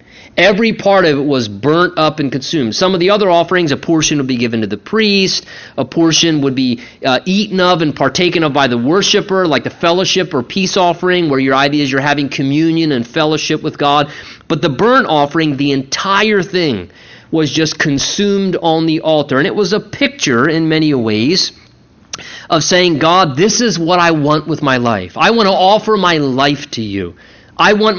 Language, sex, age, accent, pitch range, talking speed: English, male, 30-49, American, 150-195 Hz, 200 wpm